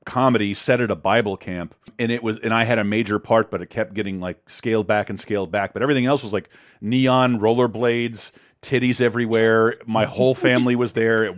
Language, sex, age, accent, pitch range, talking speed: English, male, 40-59, American, 105-125 Hz, 210 wpm